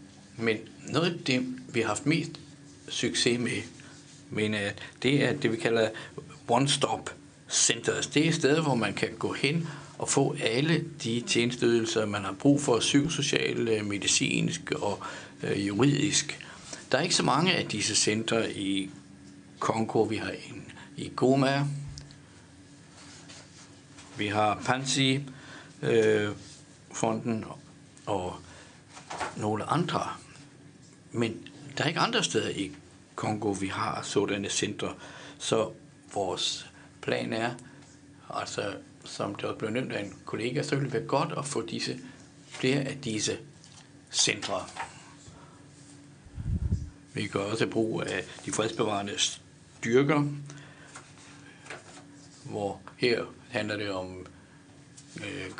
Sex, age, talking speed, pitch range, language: male, 60-79, 125 wpm, 105-145 Hz, Danish